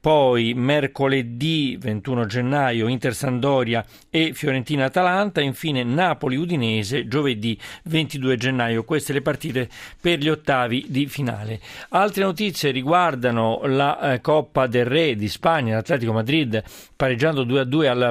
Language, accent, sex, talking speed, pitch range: Italian, native, male, 125 wpm, 125-155 Hz